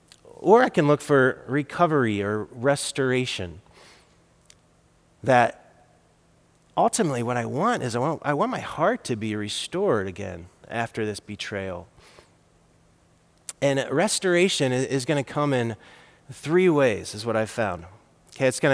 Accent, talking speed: American, 140 wpm